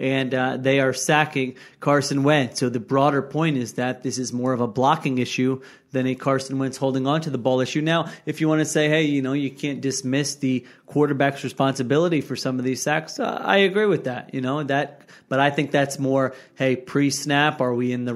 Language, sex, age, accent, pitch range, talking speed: English, male, 30-49, American, 130-145 Hz, 230 wpm